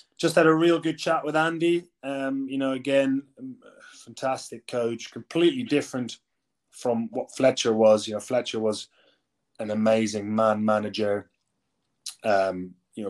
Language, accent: English, British